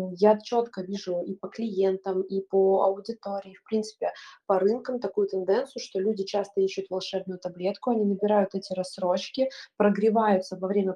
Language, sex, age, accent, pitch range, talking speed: Russian, female, 20-39, native, 190-220 Hz, 155 wpm